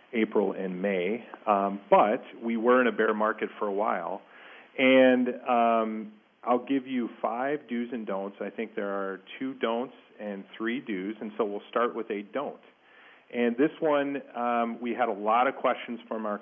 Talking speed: 185 wpm